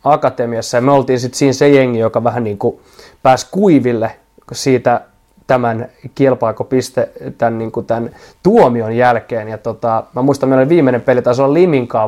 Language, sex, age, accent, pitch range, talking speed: Finnish, male, 20-39, native, 115-135 Hz, 170 wpm